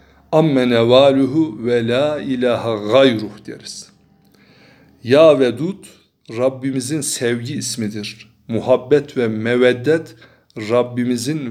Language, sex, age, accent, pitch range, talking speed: Turkish, male, 60-79, native, 115-135 Hz, 85 wpm